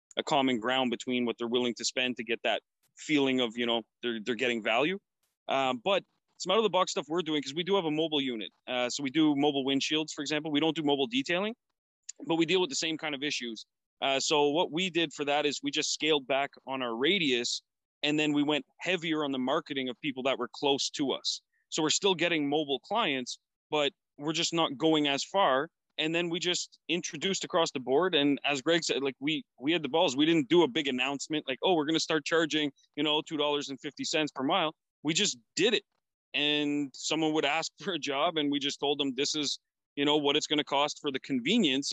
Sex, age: male, 30-49